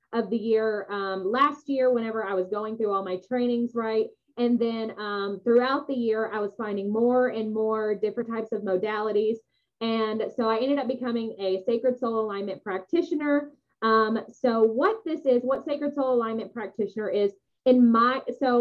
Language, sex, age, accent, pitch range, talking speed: English, female, 20-39, American, 205-250 Hz, 180 wpm